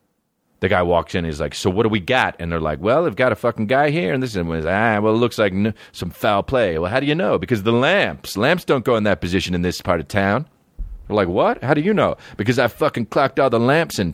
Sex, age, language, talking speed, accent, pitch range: male, 30-49, English, 285 wpm, American, 100-155 Hz